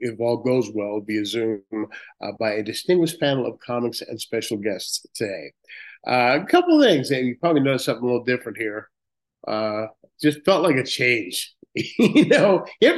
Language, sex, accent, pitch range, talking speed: English, male, American, 110-140 Hz, 190 wpm